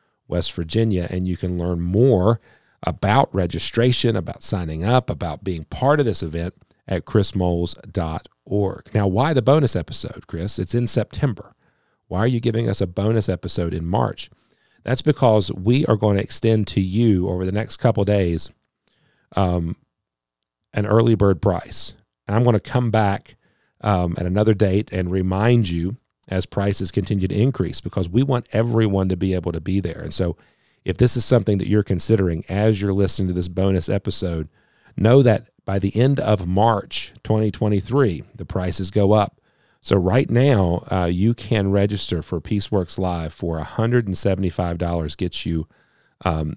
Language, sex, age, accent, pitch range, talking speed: English, male, 40-59, American, 90-110 Hz, 165 wpm